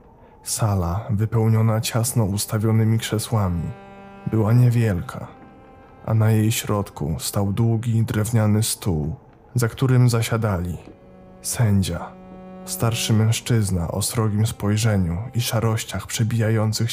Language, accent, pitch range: Polish, native, 100-120 Hz